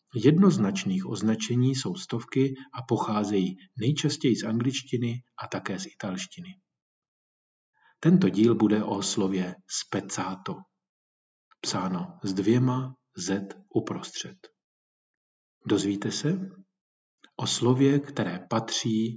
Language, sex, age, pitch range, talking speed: Czech, male, 40-59, 105-140 Hz, 95 wpm